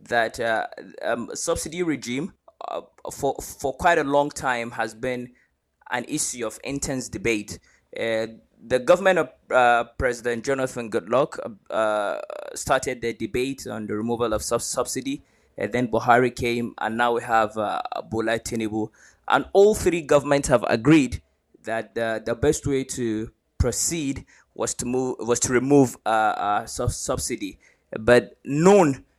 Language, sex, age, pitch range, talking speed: English, male, 20-39, 110-135 Hz, 150 wpm